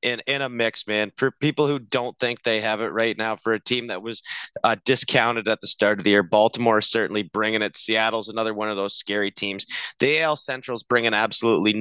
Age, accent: 30-49, American